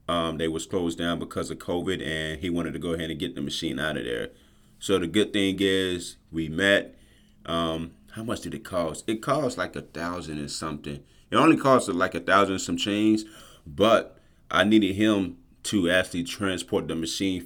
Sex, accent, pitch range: male, American, 85-100 Hz